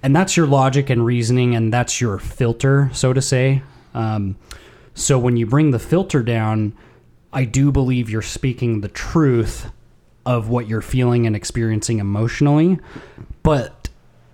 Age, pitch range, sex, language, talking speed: 20-39, 110-130 Hz, male, English, 150 wpm